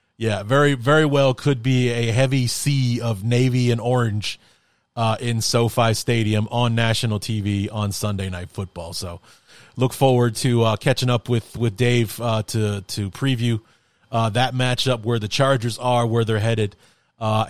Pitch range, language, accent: 105-130 Hz, English, American